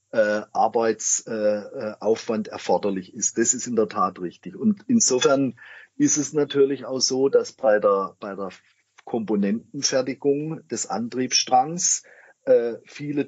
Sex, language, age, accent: male, German, 40-59, German